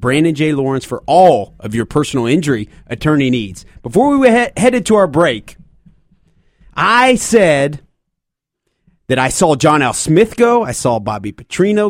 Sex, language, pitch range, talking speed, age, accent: male, English, 145-225 Hz, 150 wpm, 30-49, American